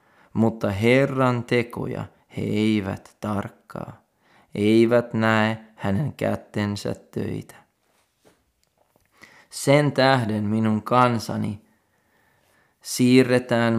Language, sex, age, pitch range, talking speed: Finnish, male, 30-49, 105-115 Hz, 70 wpm